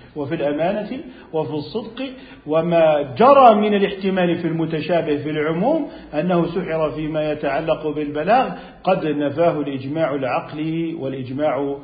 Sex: male